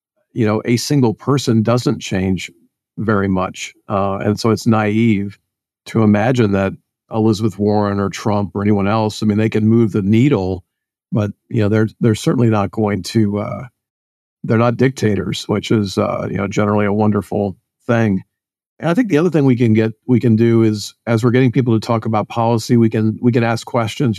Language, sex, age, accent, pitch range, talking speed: English, male, 50-69, American, 105-115 Hz, 200 wpm